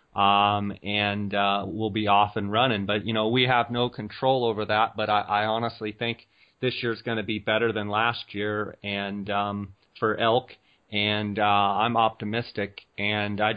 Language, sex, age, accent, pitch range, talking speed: English, male, 30-49, American, 105-115 Hz, 180 wpm